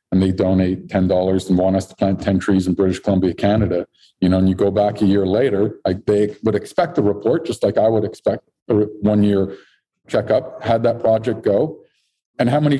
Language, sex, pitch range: English, male, 105-130 Hz